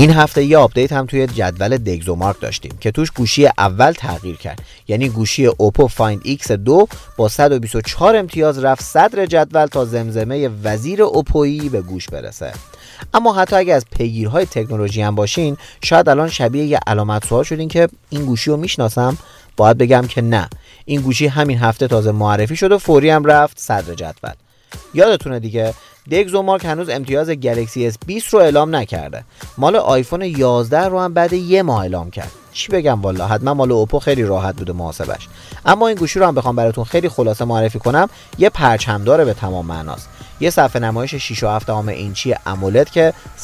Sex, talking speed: male, 180 wpm